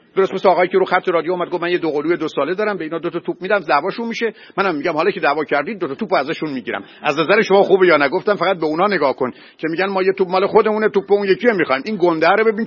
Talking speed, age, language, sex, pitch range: 295 wpm, 50-69, Persian, male, 175-215 Hz